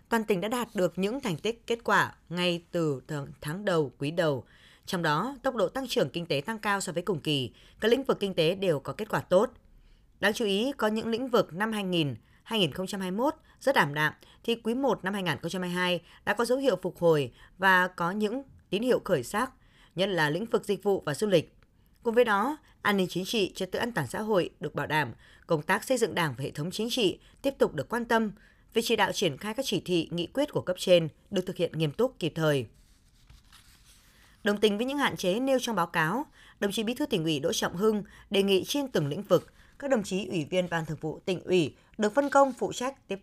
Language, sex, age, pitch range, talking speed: Vietnamese, female, 20-39, 165-230 Hz, 235 wpm